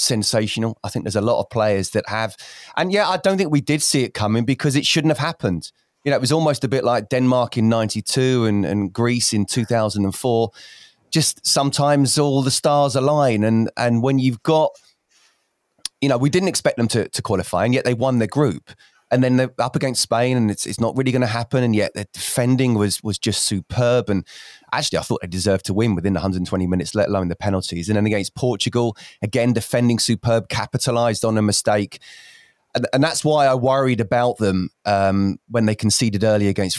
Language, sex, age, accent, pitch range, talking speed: English, male, 20-39, British, 100-125 Hz, 210 wpm